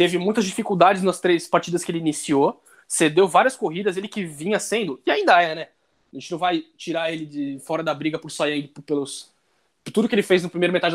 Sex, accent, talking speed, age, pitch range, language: male, Brazilian, 230 wpm, 20-39, 160-220 Hz, Portuguese